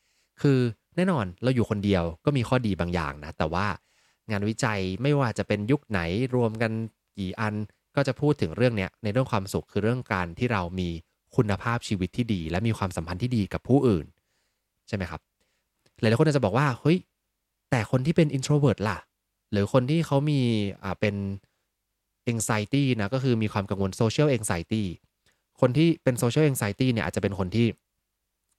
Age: 20-39